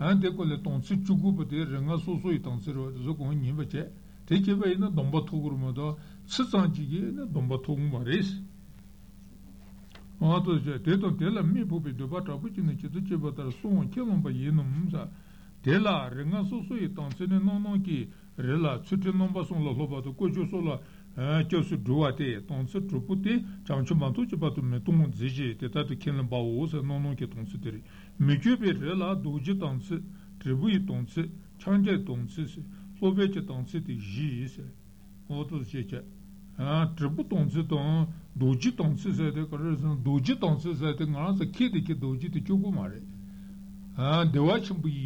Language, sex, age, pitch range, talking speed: Italian, male, 60-79, 140-190 Hz, 80 wpm